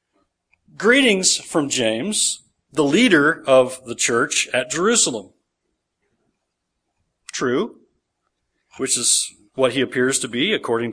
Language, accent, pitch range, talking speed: English, American, 115-195 Hz, 105 wpm